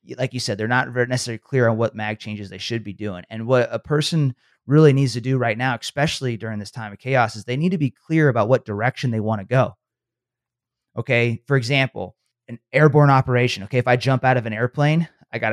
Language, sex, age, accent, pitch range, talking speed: English, male, 30-49, American, 110-135 Hz, 235 wpm